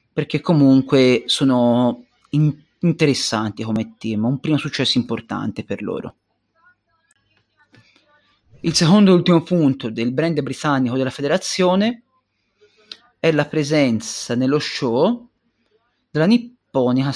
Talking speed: 100 wpm